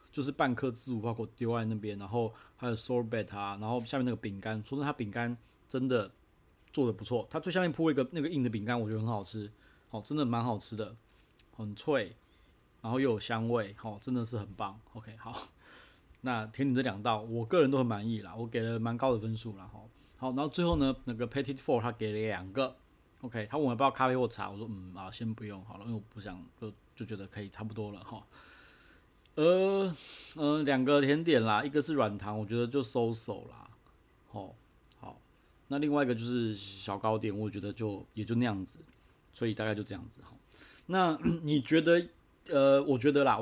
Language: Chinese